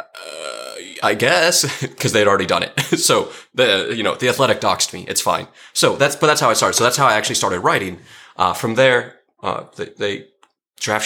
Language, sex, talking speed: English, male, 205 wpm